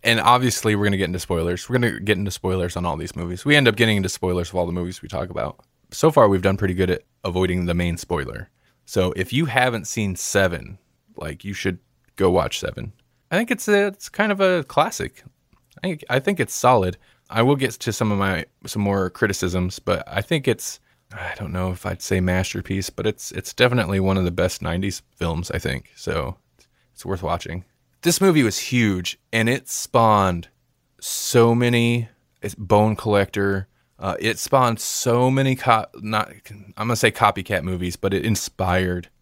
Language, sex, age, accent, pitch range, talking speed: English, male, 20-39, American, 95-120 Hz, 205 wpm